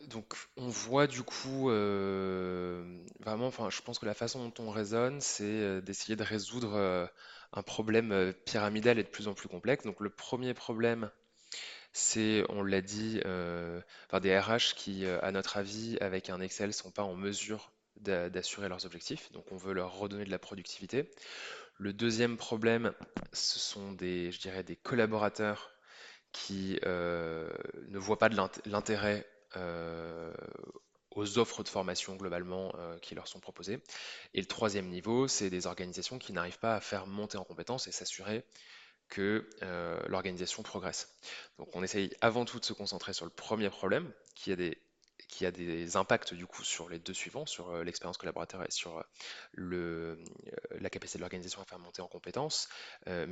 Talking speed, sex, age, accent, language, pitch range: 180 wpm, male, 20-39, French, French, 90-110 Hz